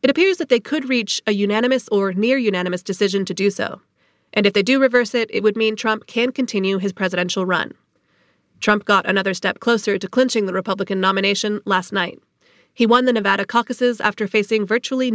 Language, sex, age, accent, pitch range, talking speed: English, female, 30-49, American, 195-235 Hz, 195 wpm